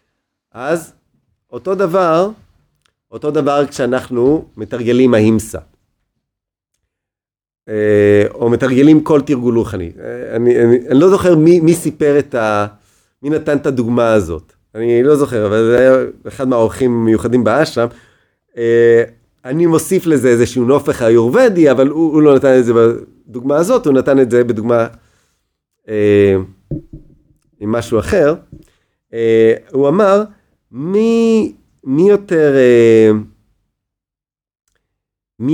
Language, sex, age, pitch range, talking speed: Hebrew, male, 30-49, 115-155 Hz, 110 wpm